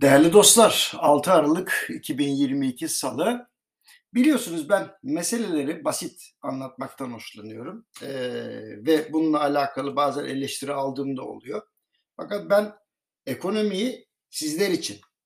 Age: 60-79